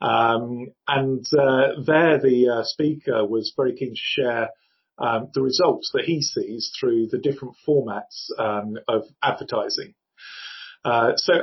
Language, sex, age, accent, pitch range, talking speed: English, male, 40-59, British, 125-185 Hz, 140 wpm